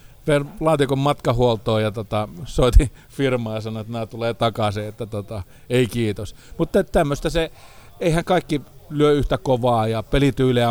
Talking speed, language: 150 wpm, Finnish